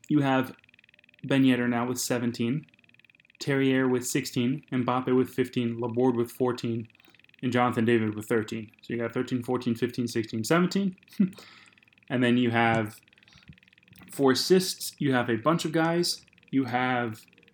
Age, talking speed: 20-39, 145 wpm